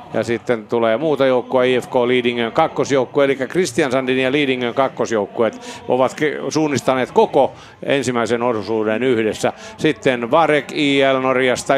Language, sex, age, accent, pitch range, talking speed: Finnish, male, 50-69, native, 125-145 Hz, 120 wpm